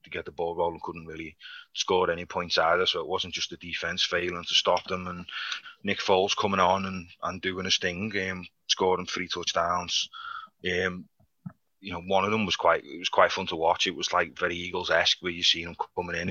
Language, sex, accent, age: English, male, British, 20-39